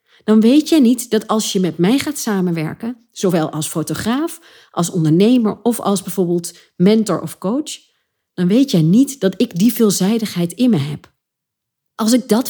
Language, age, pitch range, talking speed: Dutch, 40-59, 170-240 Hz, 175 wpm